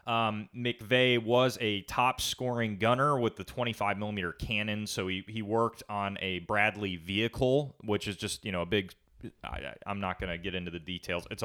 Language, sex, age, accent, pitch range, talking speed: English, male, 30-49, American, 95-115 Hz, 195 wpm